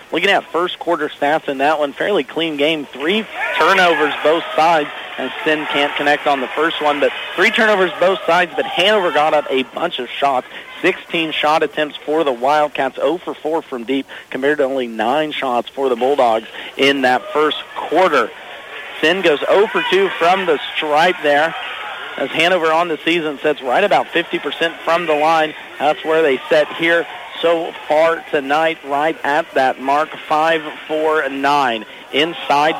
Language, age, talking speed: English, 40-59, 175 wpm